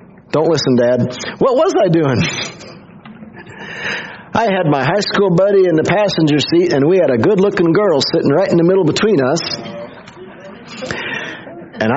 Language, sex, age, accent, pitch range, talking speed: English, male, 50-69, American, 130-180 Hz, 155 wpm